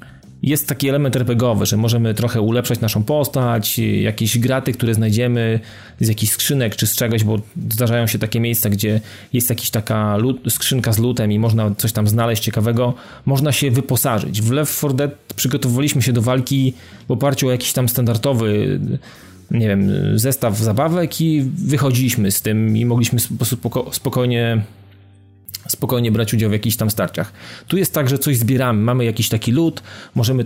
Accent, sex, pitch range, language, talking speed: native, male, 110-130 Hz, Polish, 170 wpm